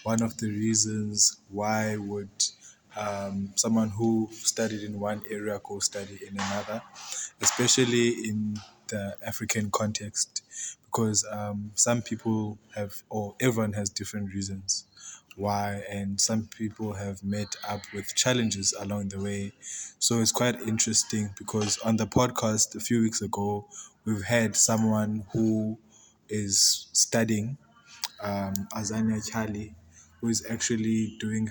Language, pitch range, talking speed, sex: English, 105-120 Hz, 130 wpm, male